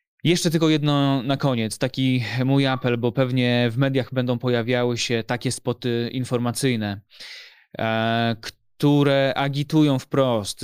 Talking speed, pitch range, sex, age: 120 wpm, 125-145 Hz, male, 20-39